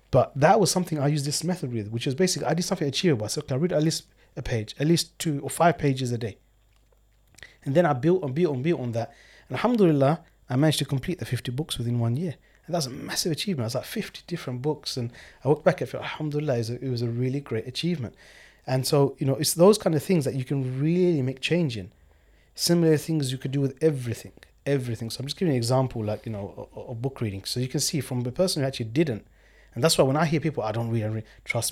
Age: 30-49